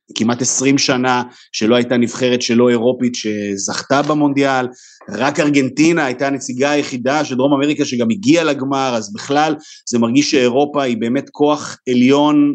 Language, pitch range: Hebrew, 115-145 Hz